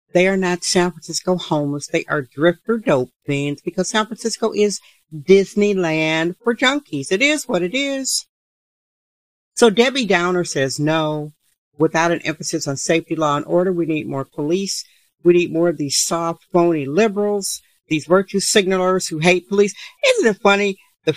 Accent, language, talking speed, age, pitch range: American, English, 165 wpm, 50-69, 155-205 Hz